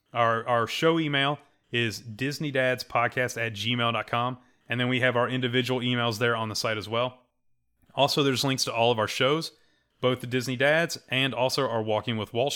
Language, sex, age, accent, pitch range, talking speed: English, male, 30-49, American, 115-140 Hz, 185 wpm